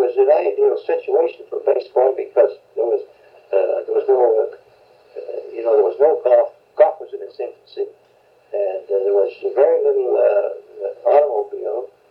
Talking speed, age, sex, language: 160 wpm, 60-79, male, English